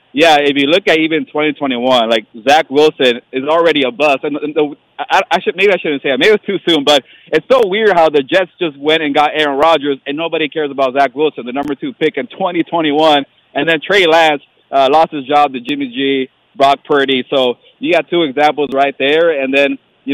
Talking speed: 230 wpm